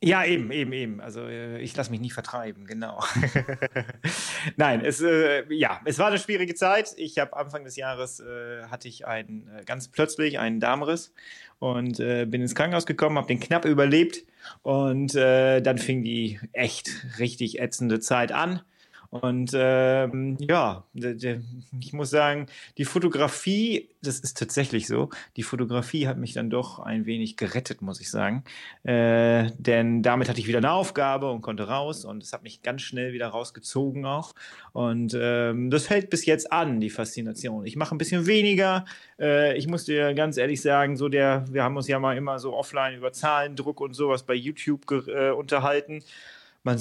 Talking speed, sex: 180 wpm, male